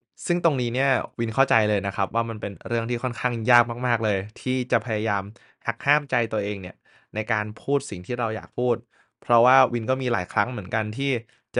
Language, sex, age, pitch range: Thai, male, 20-39, 105-130 Hz